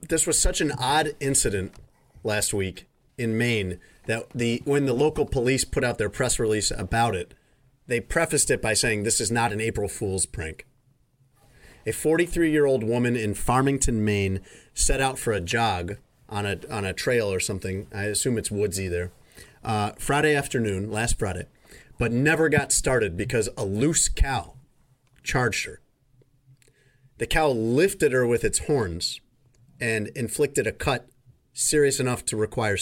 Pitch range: 100-130 Hz